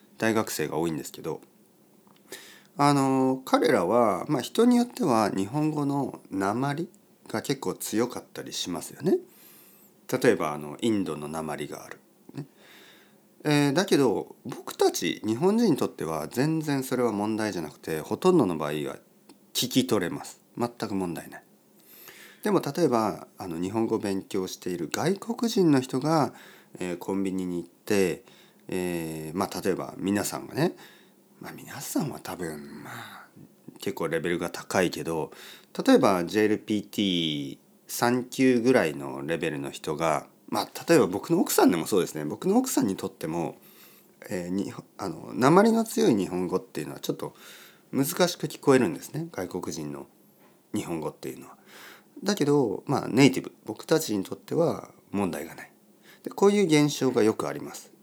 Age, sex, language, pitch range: 40-59, male, Japanese, 90-150 Hz